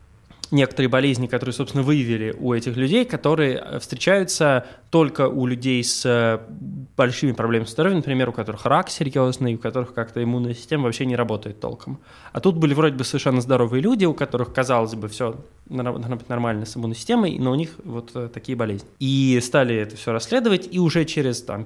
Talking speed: 175 wpm